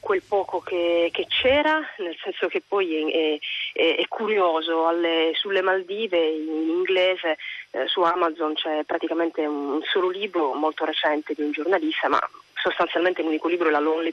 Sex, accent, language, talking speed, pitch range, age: female, native, Italian, 160 wpm, 155-190 Hz, 30-49